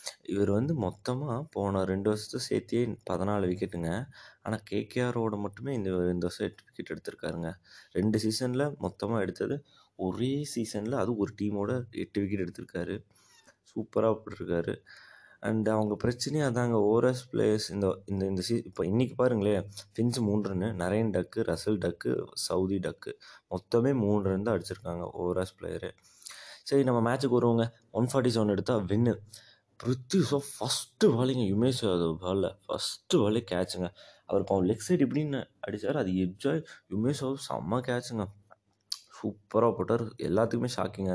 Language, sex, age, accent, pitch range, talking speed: Tamil, male, 20-39, native, 95-120 Hz, 130 wpm